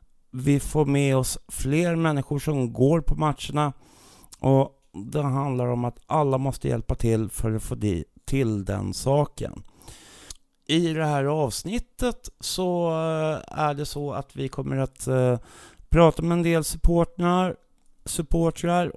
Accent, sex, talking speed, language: native, male, 135 wpm, Swedish